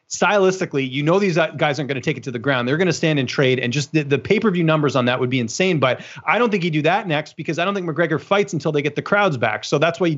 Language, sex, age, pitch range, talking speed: English, male, 30-49, 140-170 Hz, 320 wpm